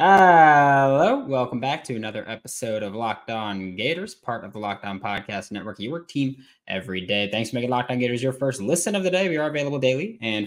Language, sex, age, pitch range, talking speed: English, male, 20-39, 110-155 Hz, 225 wpm